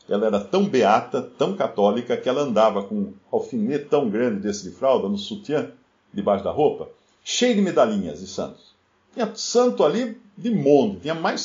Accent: Brazilian